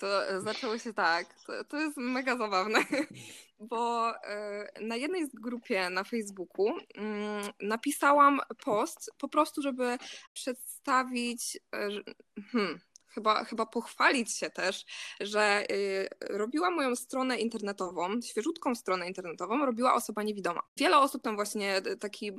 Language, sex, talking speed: Polish, female, 120 wpm